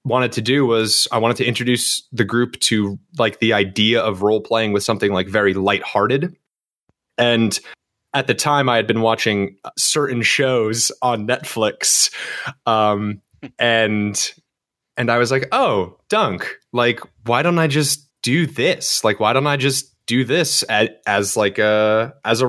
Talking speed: 165 wpm